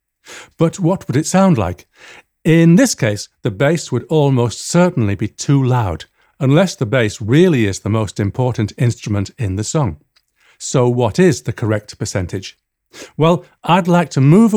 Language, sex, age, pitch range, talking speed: English, male, 50-69, 110-155 Hz, 165 wpm